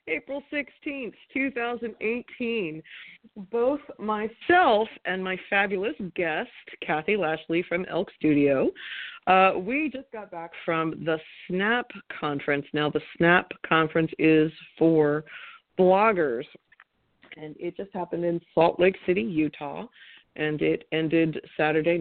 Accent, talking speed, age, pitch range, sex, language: American, 115 wpm, 40-59, 160-230 Hz, female, English